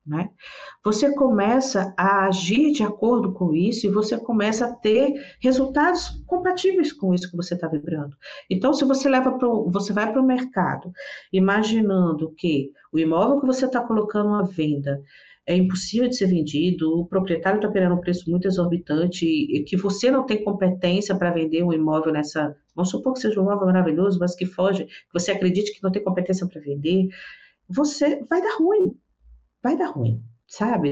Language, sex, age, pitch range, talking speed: Portuguese, female, 50-69, 175-255 Hz, 175 wpm